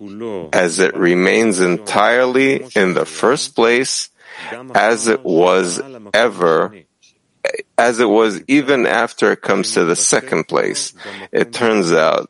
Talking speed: 125 wpm